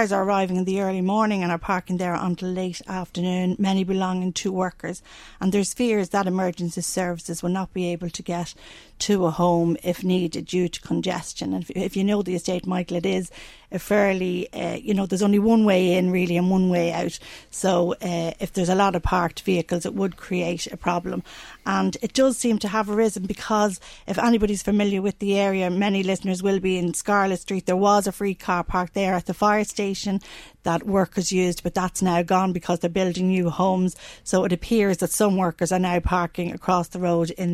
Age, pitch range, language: 40-59, 175-200 Hz, English